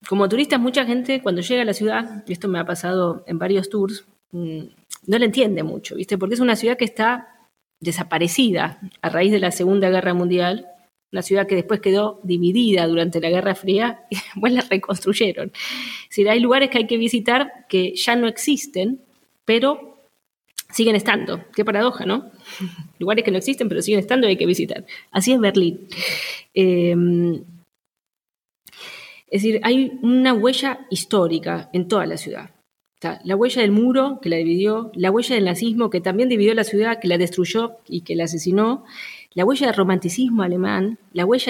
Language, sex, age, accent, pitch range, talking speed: Spanish, female, 20-39, Argentinian, 180-235 Hz, 180 wpm